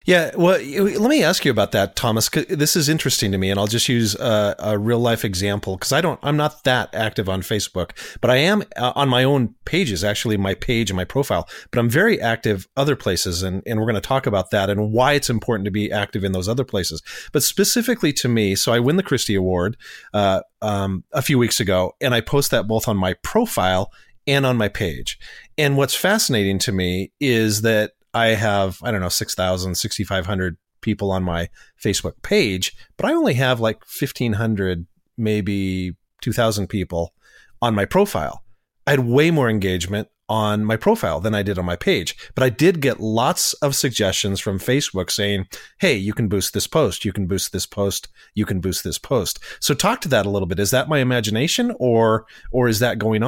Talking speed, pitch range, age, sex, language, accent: 210 wpm, 100-130 Hz, 40-59, male, English, American